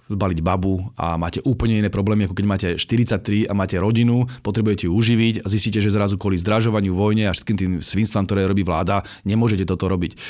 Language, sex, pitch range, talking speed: Slovak, male, 105-130 Hz, 185 wpm